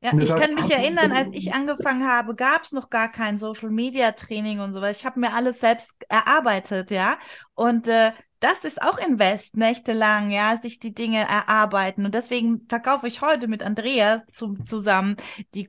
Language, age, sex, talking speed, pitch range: German, 20-39, female, 175 wpm, 210-260 Hz